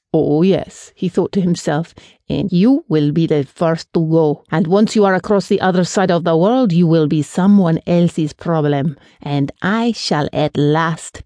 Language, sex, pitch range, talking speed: English, female, 165-220 Hz, 190 wpm